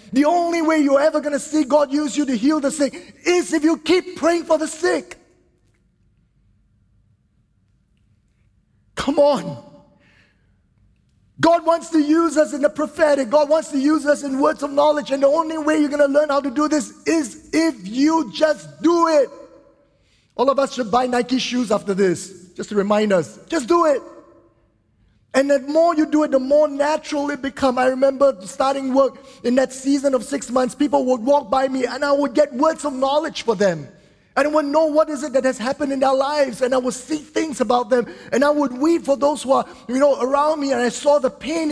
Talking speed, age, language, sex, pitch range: 215 wpm, 30-49, English, male, 245-300 Hz